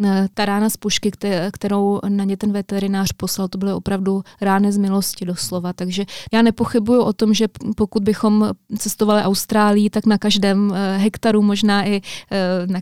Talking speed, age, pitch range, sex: 160 wpm, 20-39, 200-215 Hz, female